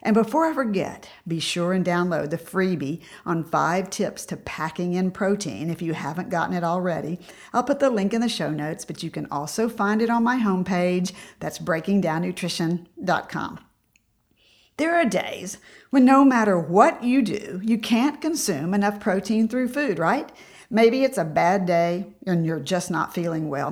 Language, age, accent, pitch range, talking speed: English, 50-69, American, 170-230 Hz, 175 wpm